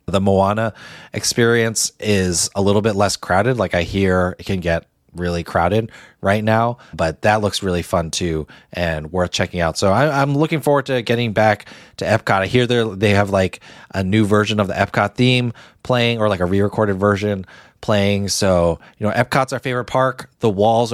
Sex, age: male, 20-39